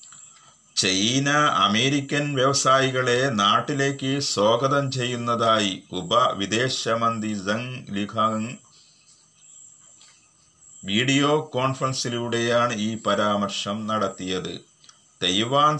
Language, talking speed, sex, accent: Malayalam, 65 wpm, male, native